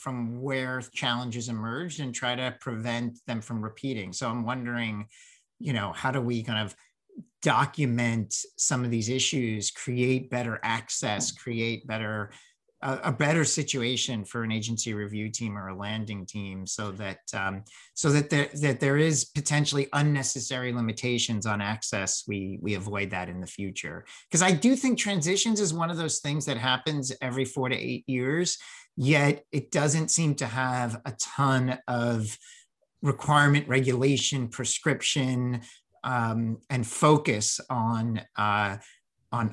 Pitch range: 115-145 Hz